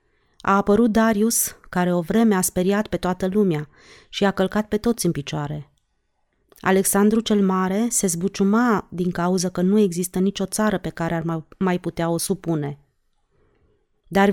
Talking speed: 160 wpm